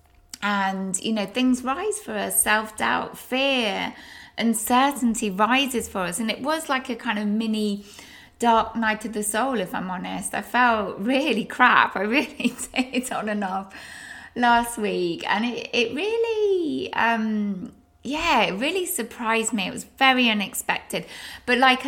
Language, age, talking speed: English, 20-39, 160 wpm